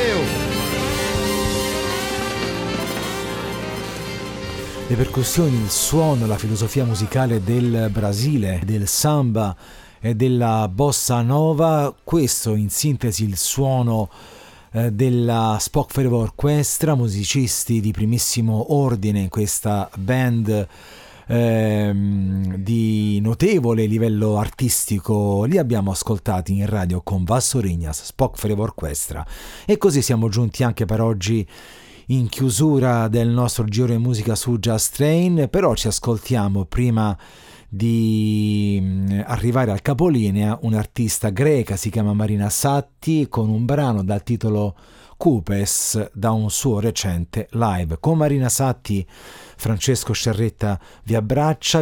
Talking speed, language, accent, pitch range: 110 wpm, Italian, native, 105-125 Hz